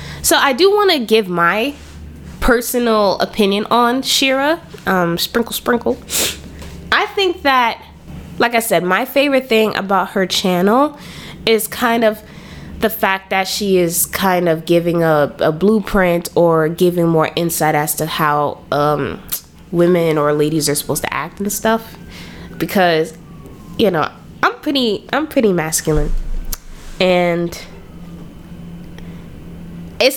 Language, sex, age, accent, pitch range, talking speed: English, female, 20-39, American, 170-225 Hz, 135 wpm